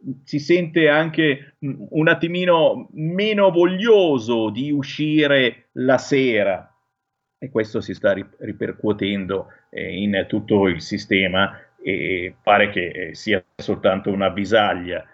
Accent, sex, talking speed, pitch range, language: native, male, 110 wpm, 105-150 Hz, Italian